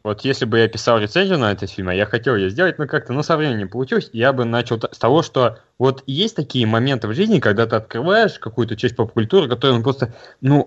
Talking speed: 235 wpm